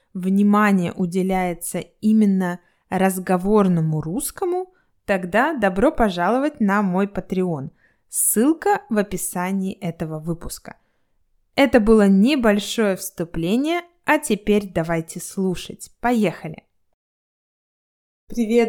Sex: female